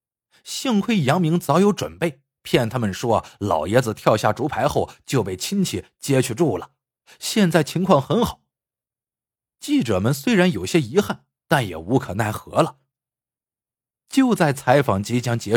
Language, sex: Chinese, male